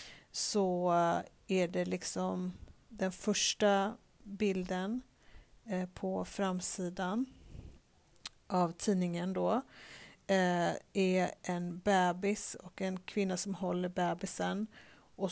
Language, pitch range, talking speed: Swedish, 180-205 Hz, 95 wpm